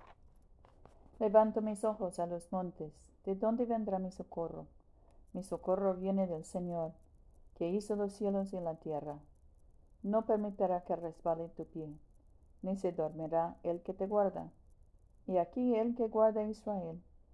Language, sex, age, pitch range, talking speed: Spanish, female, 50-69, 160-200 Hz, 150 wpm